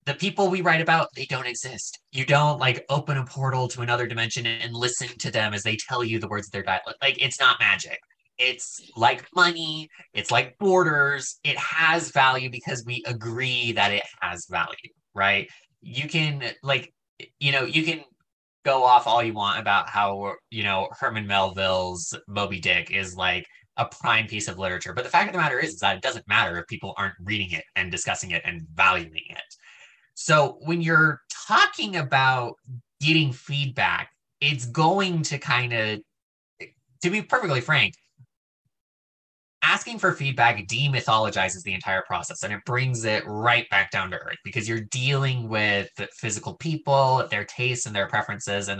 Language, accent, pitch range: English, American, 105-145 Hz